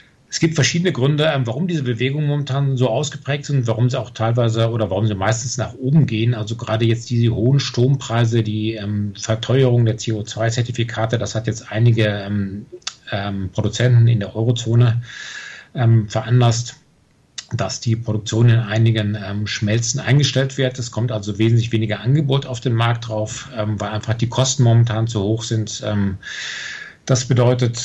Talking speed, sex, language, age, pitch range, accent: 160 wpm, male, German, 40-59, 105-125 Hz, German